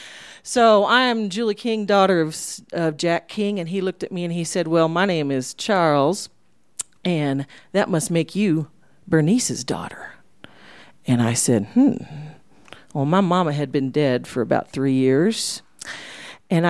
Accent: American